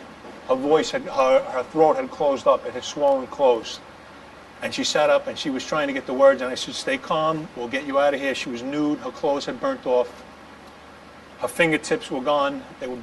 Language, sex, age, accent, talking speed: English, male, 40-59, American, 230 wpm